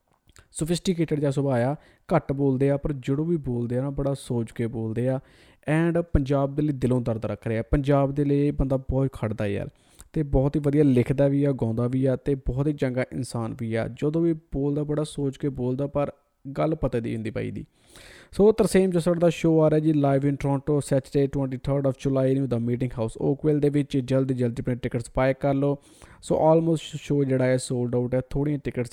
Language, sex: Punjabi, male